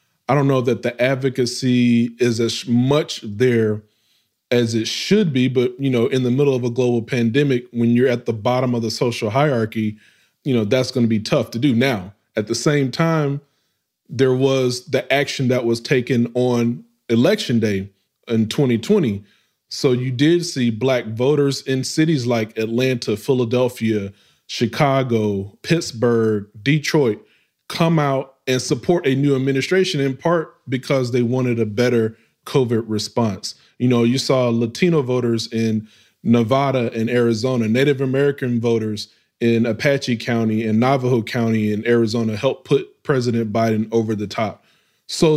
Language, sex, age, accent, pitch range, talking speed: English, male, 20-39, American, 115-140 Hz, 155 wpm